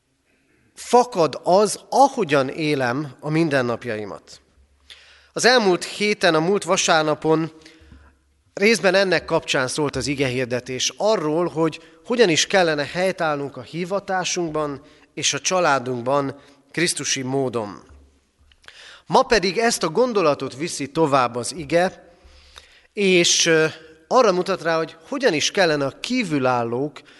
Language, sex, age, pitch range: Hungarian, male, 30-49, 130-180 Hz